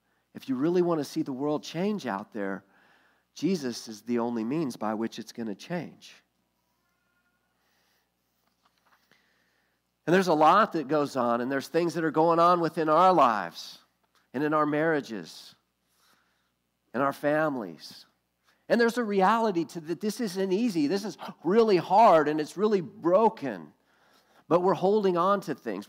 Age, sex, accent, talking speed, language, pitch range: 50-69, male, American, 160 wpm, English, 130-185 Hz